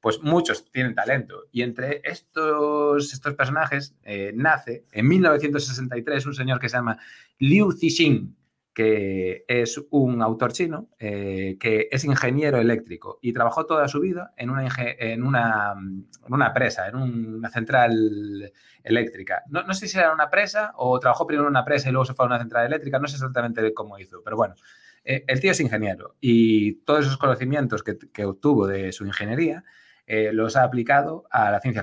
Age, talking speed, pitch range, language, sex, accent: 30-49, 185 wpm, 110-140 Hz, Spanish, male, Spanish